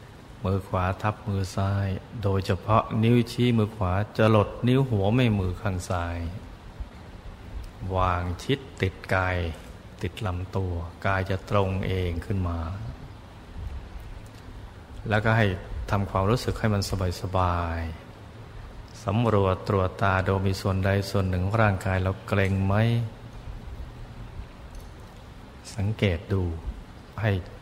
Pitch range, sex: 90-105 Hz, male